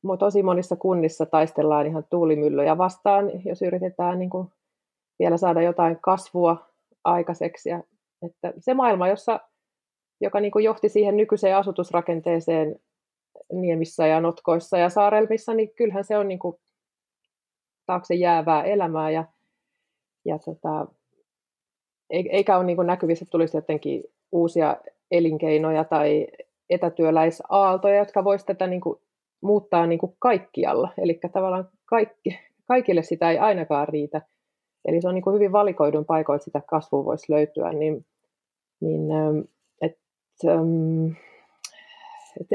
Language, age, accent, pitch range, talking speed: Finnish, 30-49, native, 165-205 Hz, 120 wpm